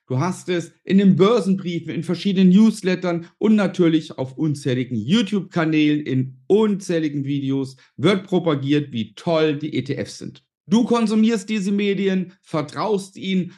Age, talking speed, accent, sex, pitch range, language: 50-69, 135 wpm, German, male, 140-195 Hz, German